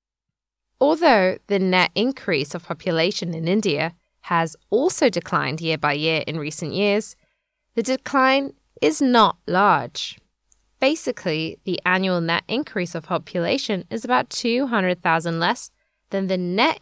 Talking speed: 130 wpm